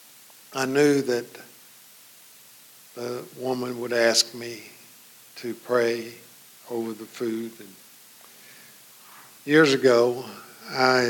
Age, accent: 50-69, American